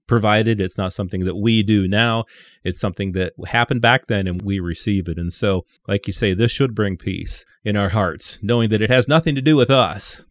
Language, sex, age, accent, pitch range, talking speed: English, male, 30-49, American, 100-130 Hz, 225 wpm